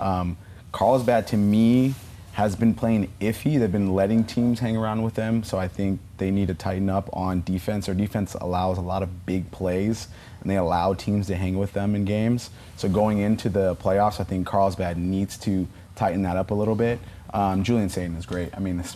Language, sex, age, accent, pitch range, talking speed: English, male, 30-49, American, 95-105 Hz, 215 wpm